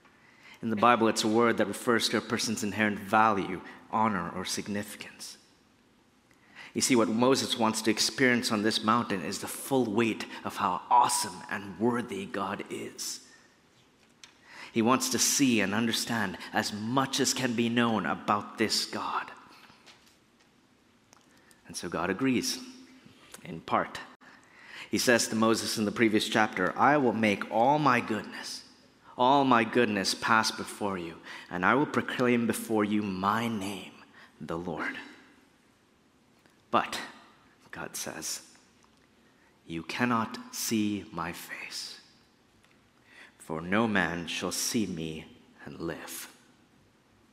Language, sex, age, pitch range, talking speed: English, male, 30-49, 105-120 Hz, 130 wpm